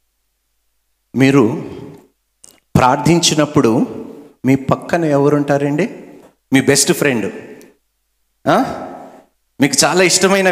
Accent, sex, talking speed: native, male, 70 wpm